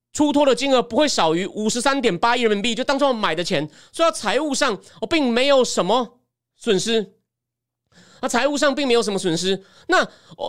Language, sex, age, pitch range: Chinese, male, 30-49, 195-275 Hz